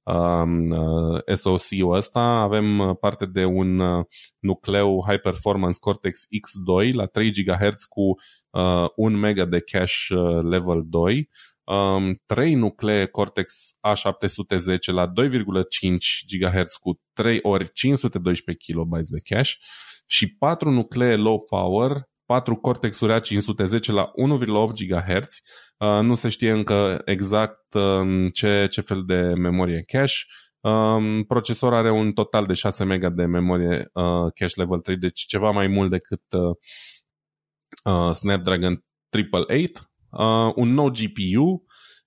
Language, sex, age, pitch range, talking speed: Romanian, male, 20-39, 90-125 Hz, 120 wpm